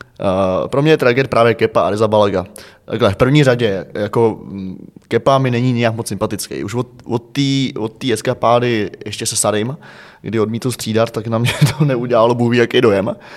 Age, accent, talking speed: 20-39, native, 170 wpm